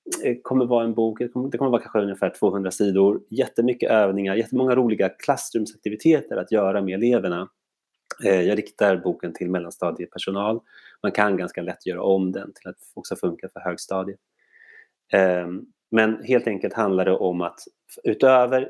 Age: 30-49